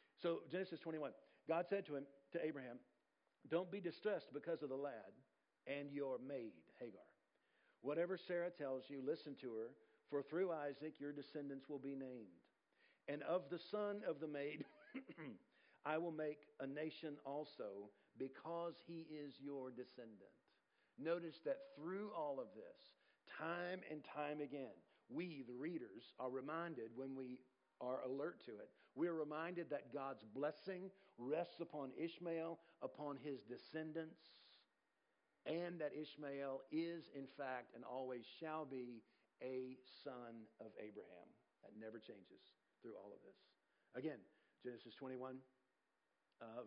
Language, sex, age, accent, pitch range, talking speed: English, male, 50-69, American, 130-165 Hz, 145 wpm